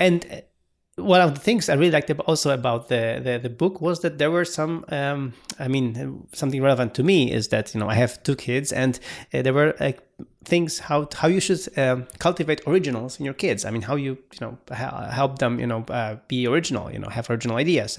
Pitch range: 130-170 Hz